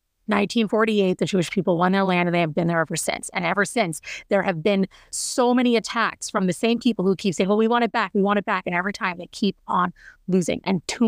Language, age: English, 30-49